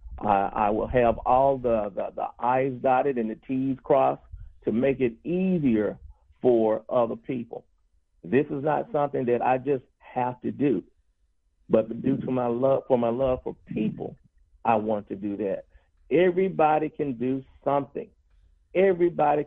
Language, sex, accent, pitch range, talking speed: English, male, American, 110-135 Hz, 155 wpm